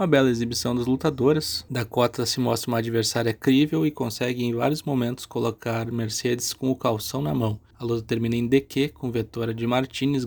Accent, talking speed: Brazilian, 185 wpm